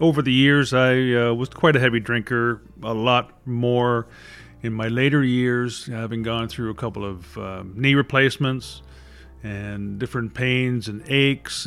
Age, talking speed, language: 40-59, 160 wpm, English